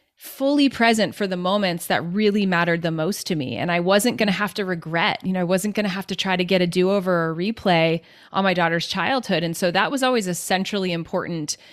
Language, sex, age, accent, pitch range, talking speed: English, female, 30-49, American, 180-230 Hz, 235 wpm